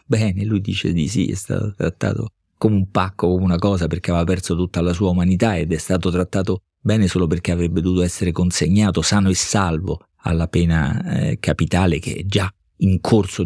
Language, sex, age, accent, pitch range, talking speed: Italian, male, 50-69, native, 85-95 Hz, 195 wpm